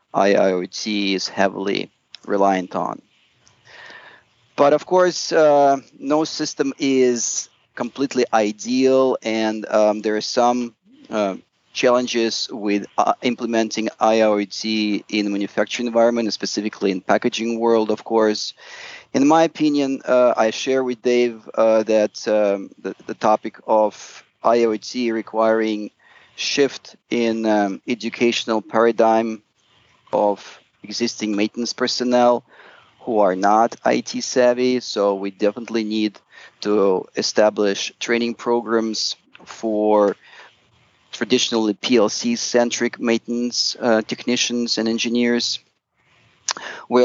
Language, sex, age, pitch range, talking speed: English, male, 40-59, 105-125 Hz, 105 wpm